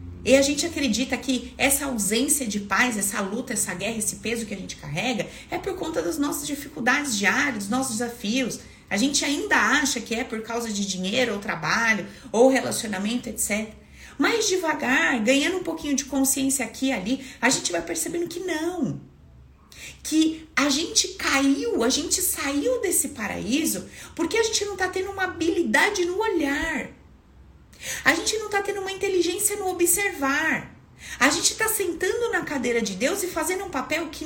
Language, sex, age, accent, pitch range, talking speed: Portuguese, female, 30-49, Brazilian, 245-375 Hz, 175 wpm